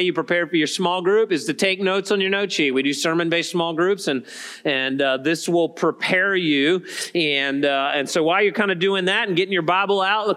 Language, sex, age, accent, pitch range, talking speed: English, male, 40-59, American, 170-205 Hz, 245 wpm